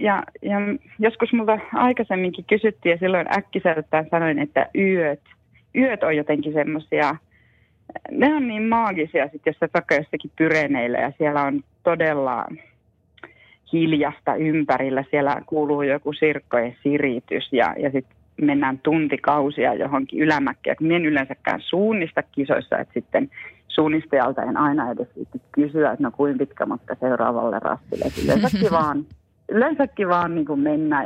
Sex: female